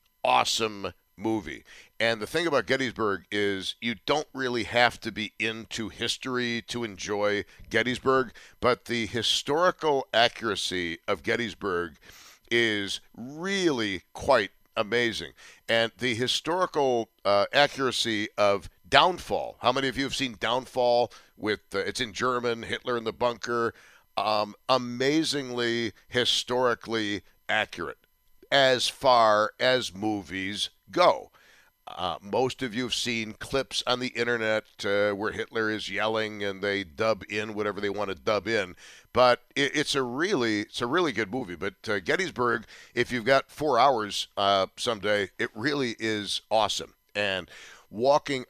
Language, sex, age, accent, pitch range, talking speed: English, male, 60-79, American, 100-125 Hz, 140 wpm